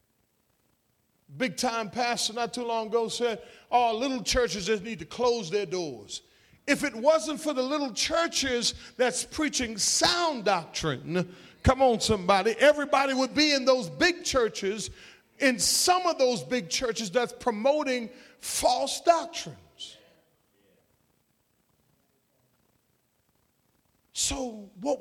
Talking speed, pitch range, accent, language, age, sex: 120 wpm, 180-260 Hz, American, English, 40-59, male